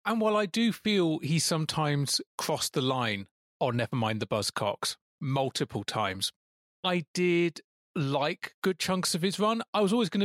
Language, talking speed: English, 170 wpm